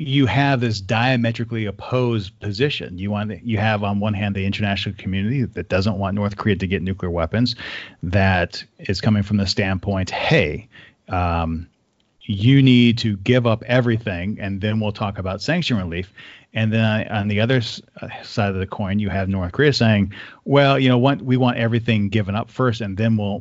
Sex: male